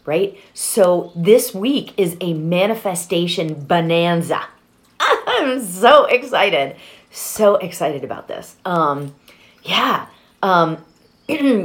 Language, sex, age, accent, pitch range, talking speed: English, female, 30-49, American, 165-220 Hz, 95 wpm